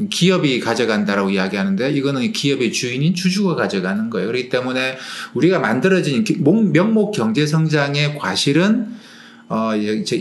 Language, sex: Korean, male